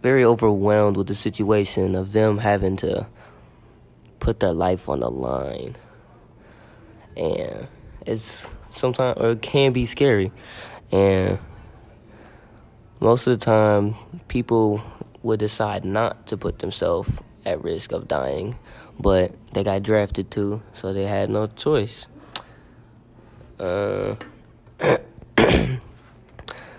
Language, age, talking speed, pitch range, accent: English, 20-39, 110 wpm, 100-120 Hz, American